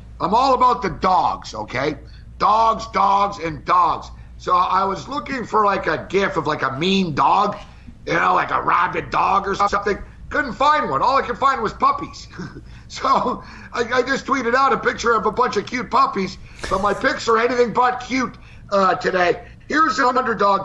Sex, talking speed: male, 190 wpm